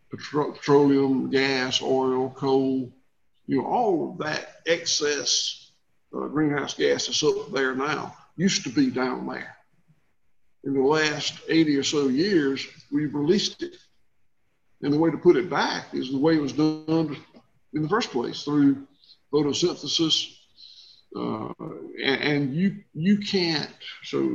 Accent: American